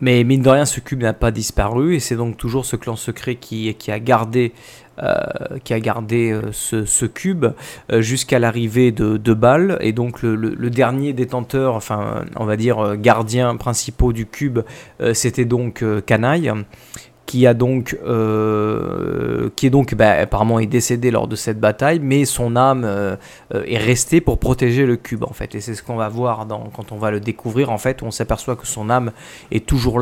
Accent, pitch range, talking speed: French, 110-130 Hz, 185 wpm